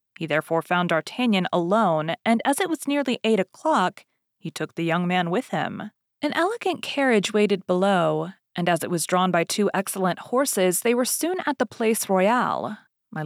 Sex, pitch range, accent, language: female, 170-245 Hz, American, English